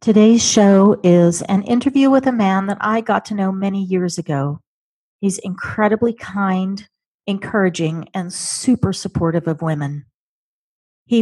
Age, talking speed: 40-59, 140 wpm